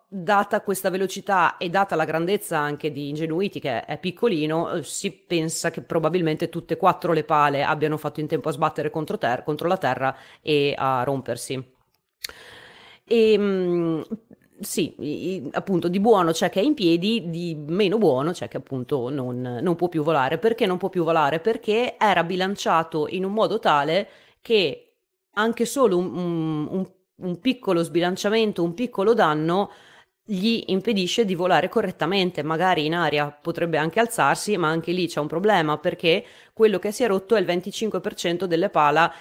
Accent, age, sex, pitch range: native, 30-49, female, 160-205 Hz